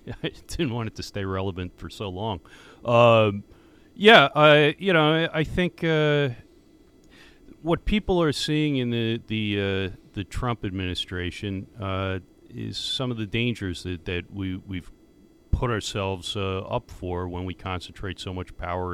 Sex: male